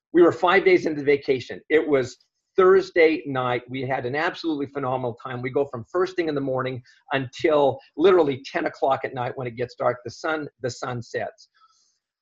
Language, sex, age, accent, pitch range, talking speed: English, male, 50-69, American, 120-150 Hz, 195 wpm